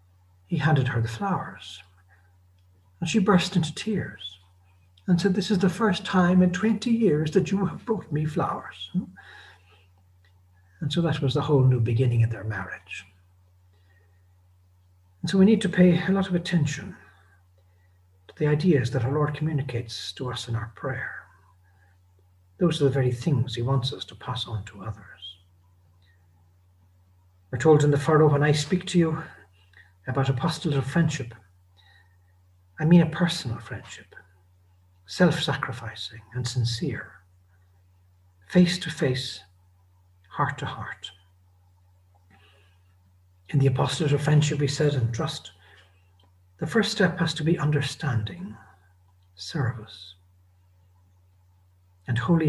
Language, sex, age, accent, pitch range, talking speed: English, male, 60-79, Irish, 90-150 Hz, 130 wpm